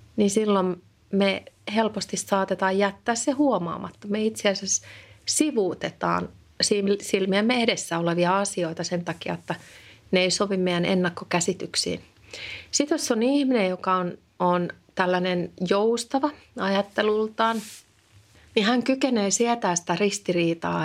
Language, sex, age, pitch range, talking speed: Finnish, female, 30-49, 175-210 Hz, 115 wpm